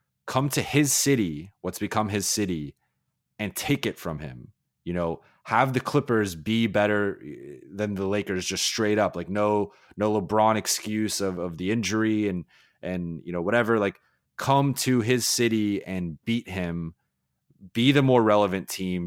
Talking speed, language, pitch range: 165 wpm, English, 90-110 Hz